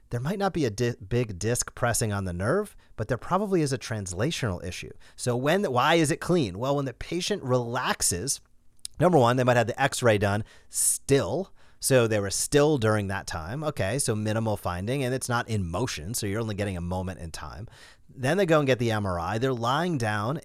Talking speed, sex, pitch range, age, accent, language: 210 wpm, male, 105-140 Hz, 30-49, American, English